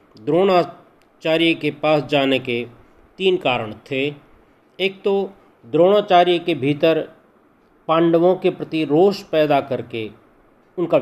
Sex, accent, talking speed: male, native, 110 wpm